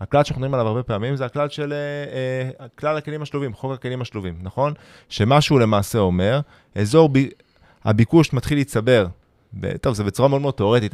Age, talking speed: 20-39, 165 wpm